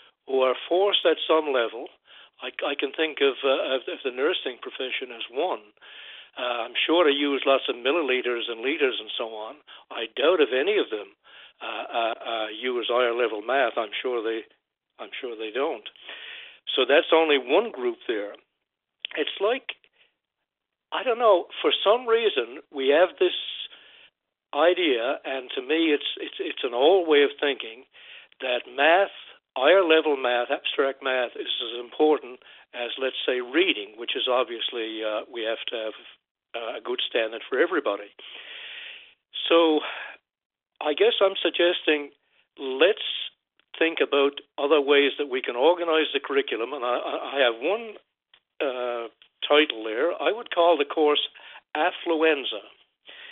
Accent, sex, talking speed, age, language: American, male, 155 wpm, 60-79, English